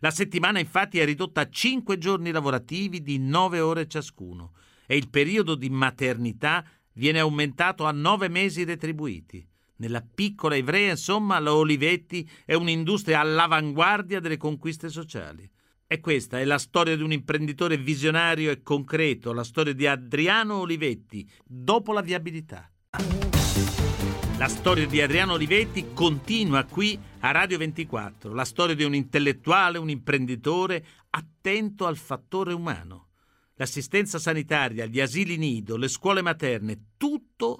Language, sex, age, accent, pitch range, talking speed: Italian, male, 50-69, native, 130-180 Hz, 135 wpm